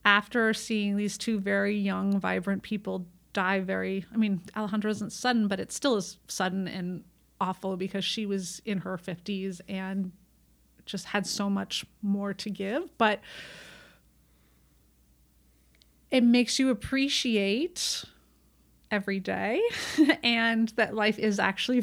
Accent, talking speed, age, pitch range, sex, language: American, 130 wpm, 30-49, 190-220 Hz, female, English